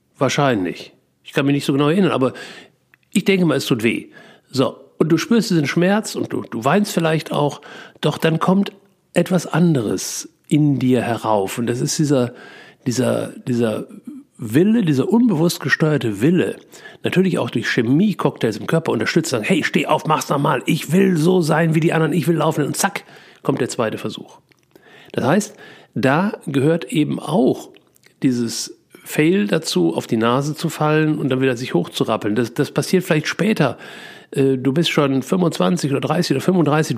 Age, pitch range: 60-79, 130-175 Hz